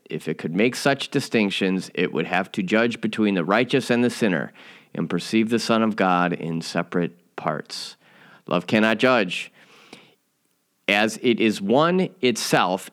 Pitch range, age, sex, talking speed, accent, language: 90-115 Hz, 30-49, male, 160 wpm, American, English